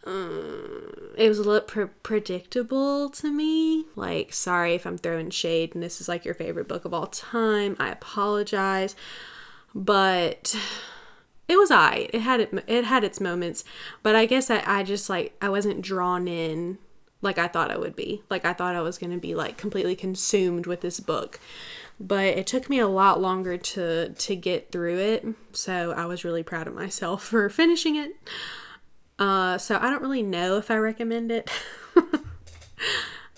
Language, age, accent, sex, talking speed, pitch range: English, 20-39, American, female, 180 wpm, 180-225 Hz